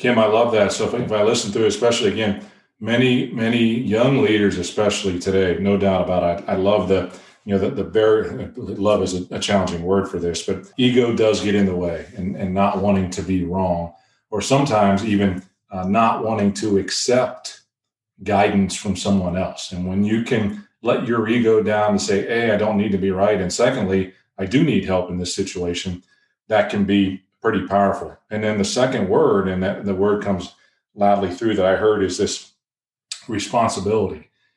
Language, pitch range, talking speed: English, 95-110 Hz, 200 wpm